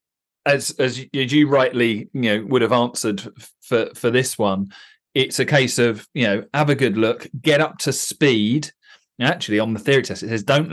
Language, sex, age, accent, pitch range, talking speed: English, male, 40-59, British, 105-135 Hz, 200 wpm